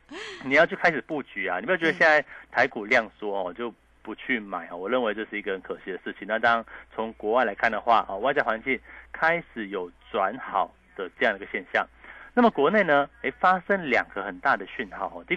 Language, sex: Chinese, male